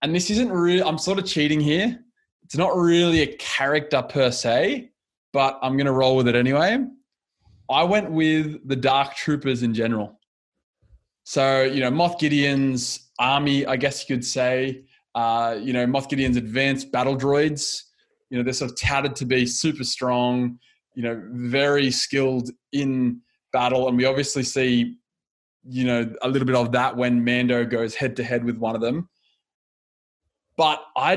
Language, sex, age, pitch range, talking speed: English, male, 20-39, 125-155 Hz, 175 wpm